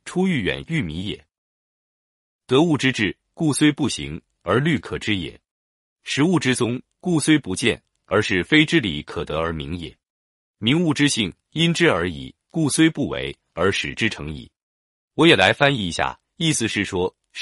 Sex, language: male, Chinese